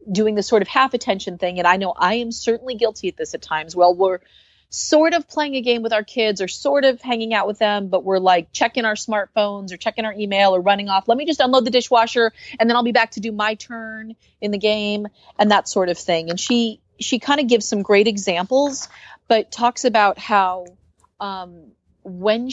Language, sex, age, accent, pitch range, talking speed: English, female, 40-59, American, 180-230 Hz, 230 wpm